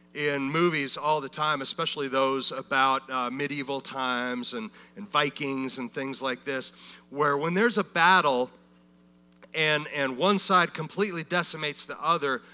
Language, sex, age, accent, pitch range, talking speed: English, male, 40-59, American, 135-190 Hz, 150 wpm